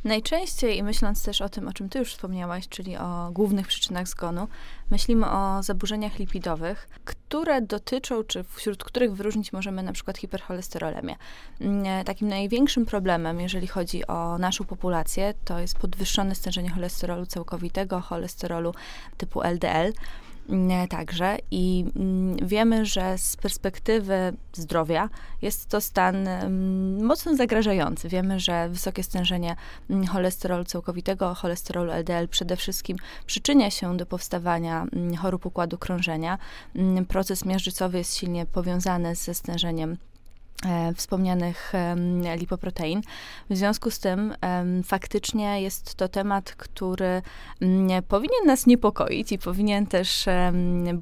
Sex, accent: female, native